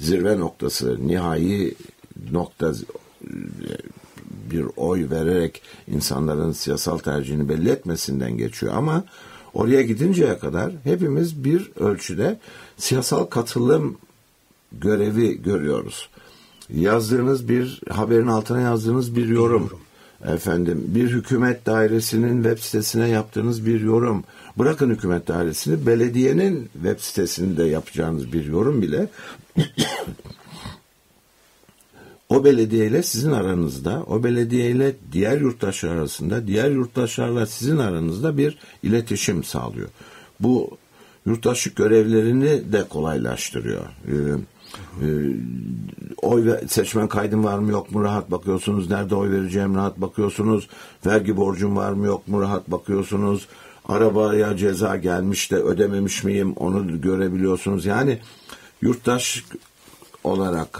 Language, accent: Turkish, native